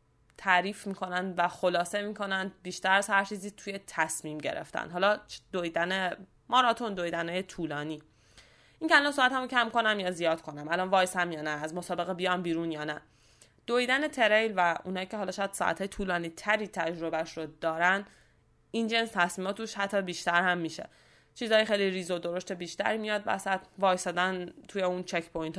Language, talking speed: Persian, 165 wpm